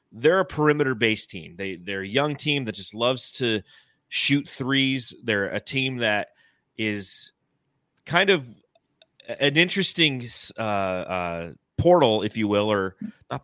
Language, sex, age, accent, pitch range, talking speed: English, male, 30-49, American, 110-140 Hz, 145 wpm